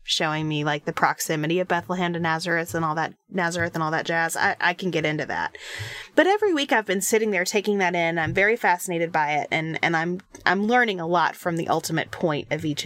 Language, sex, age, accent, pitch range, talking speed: English, female, 30-49, American, 170-240 Hz, 240 wpm